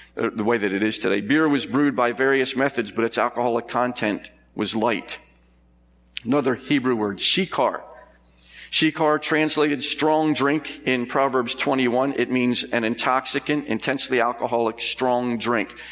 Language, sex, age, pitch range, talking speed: English, male, 50-69, 110-130 Hz, 140 wpm